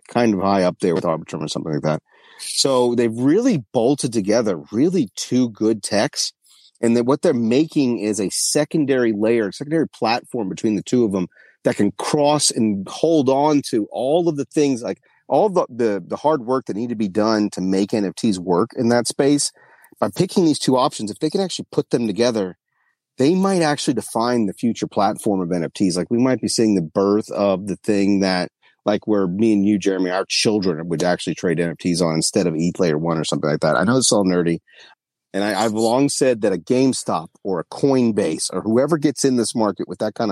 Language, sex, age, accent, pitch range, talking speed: English, male, 40-59, American, 100-125 Hz, 215 wpm